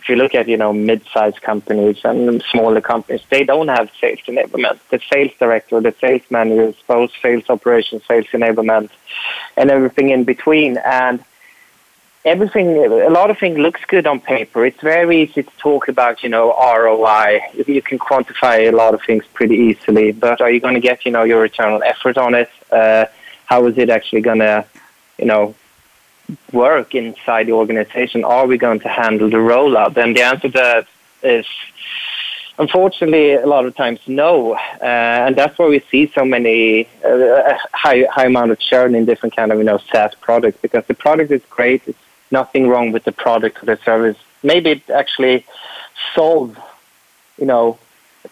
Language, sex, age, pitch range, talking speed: English, male, 20-39, 110-130 Hz, 185 wpm